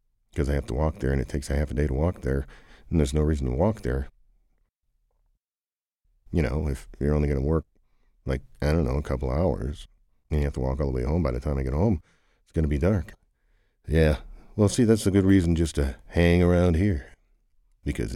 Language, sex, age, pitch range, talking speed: English, male, 50-69, 70-90 Hz, 240 wpm